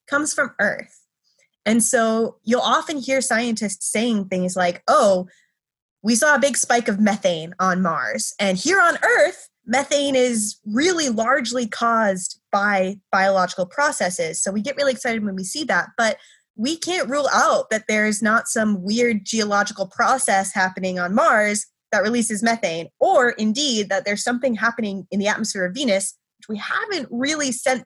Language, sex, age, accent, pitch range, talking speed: English, female, 20-39, American, 200-265 Hz, 165 wpm